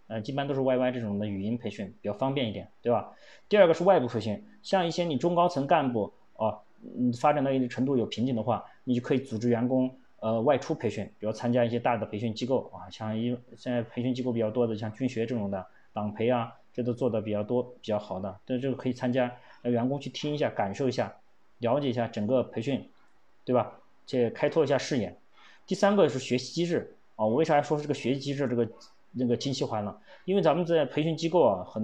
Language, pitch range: Chinese, 120-145 Hz